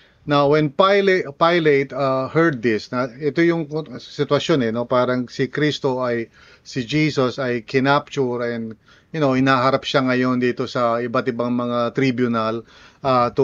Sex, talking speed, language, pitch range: male, 155 wpm, English, 125-150 Hz